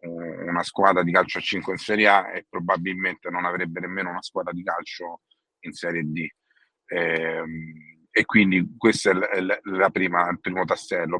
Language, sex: Italian, male